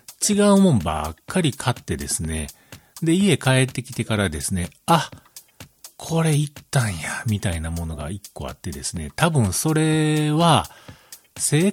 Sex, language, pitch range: male, Japanese, 95-150 Hz